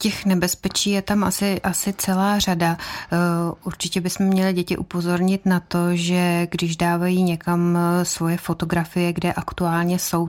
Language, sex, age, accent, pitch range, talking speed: Czech, female, 30-49, native, 155-175 Hz, 140 wpm